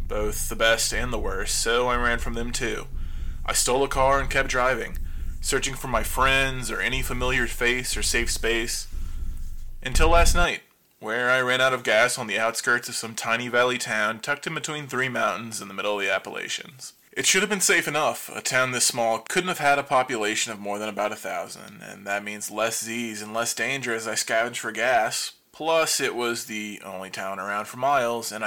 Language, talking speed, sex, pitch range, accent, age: English, 215 wpm, male, 105-125 Hz, American, 20-39